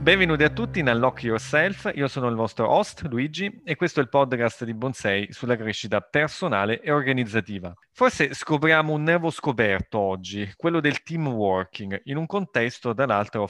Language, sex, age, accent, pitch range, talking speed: Italian, male, 30-49, native, 110-140 Hz, 170 wpm